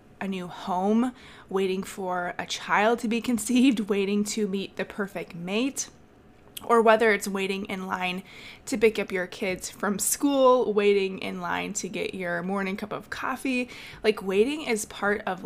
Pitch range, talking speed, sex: 195-235 Hz, 170 wpm, female